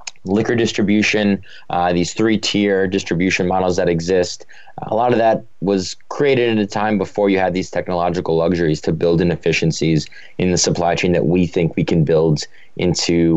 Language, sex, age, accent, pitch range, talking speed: English, male, 20-39, American, 90-100 Hz, 175 wpm